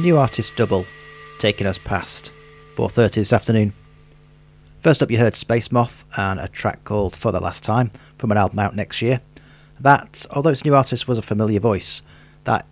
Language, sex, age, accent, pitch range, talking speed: English, male, 40-59, British, 100-130 Hz, 190 wpm